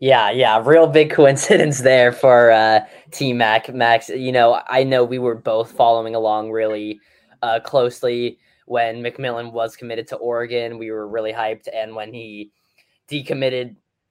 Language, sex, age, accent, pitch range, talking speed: English, male, 10-29, American, 110-130 Hz, 155 wpm